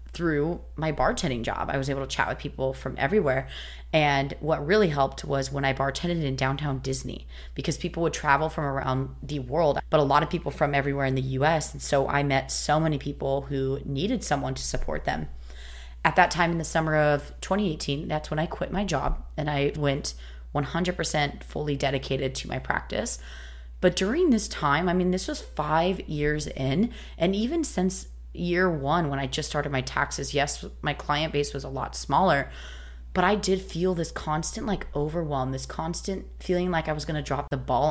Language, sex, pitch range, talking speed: English, female, 130-165 Hz, 200 wpm